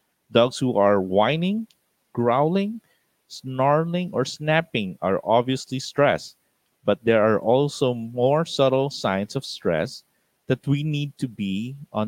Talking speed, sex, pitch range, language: 130 wpm, male, 105-140 Hz, English